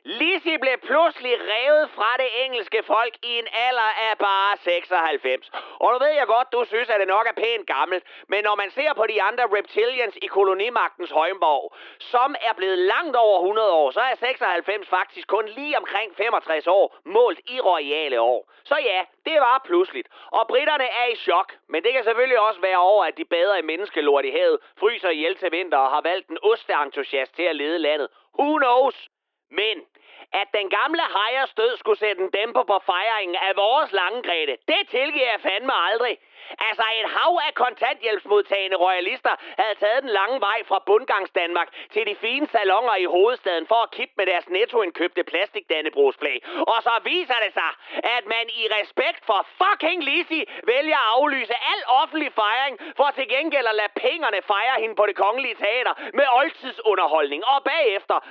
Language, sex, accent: Danish, male, native